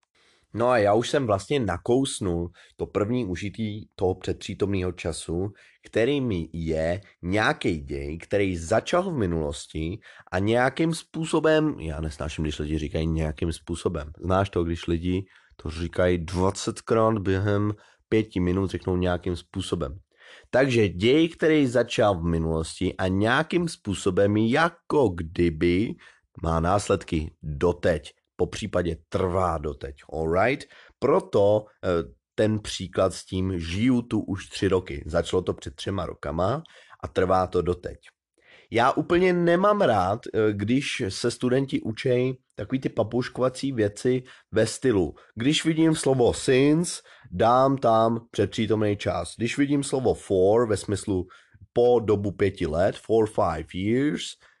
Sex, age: male, 30-49